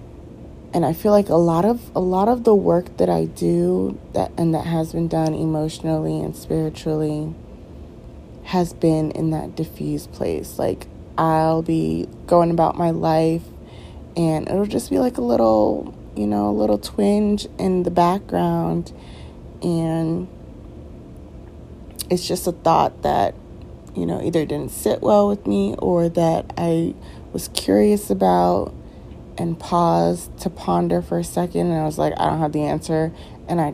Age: 30-49